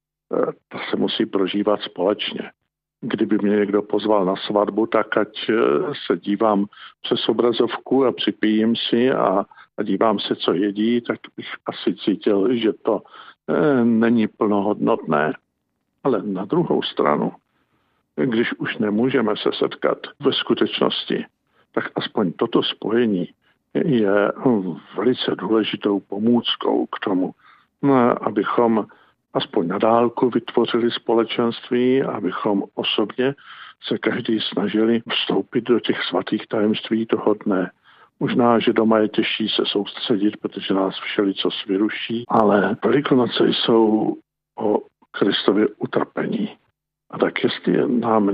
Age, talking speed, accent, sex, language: 50-69, 115 wpm, native, male, Czech